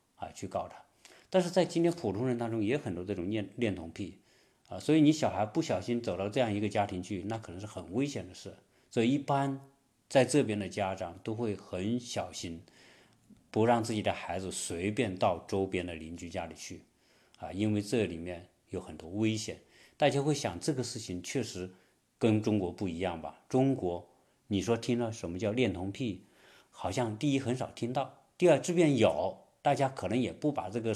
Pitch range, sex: 95-125 Hz, male